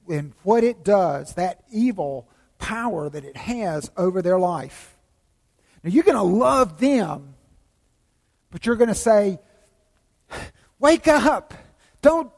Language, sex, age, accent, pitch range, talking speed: English, male, 50-69, American, 165-230 Hz, 120 wpm